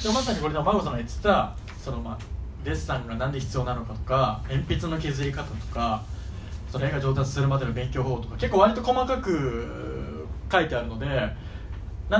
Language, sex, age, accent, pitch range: Japanese, male, 20-39, native, 100-155 Hz